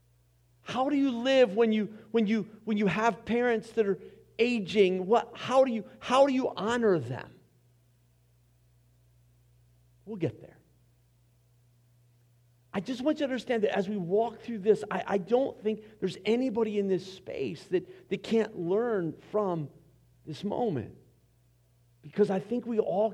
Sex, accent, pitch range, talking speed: male, American, 155-235 Hz, 155 wpm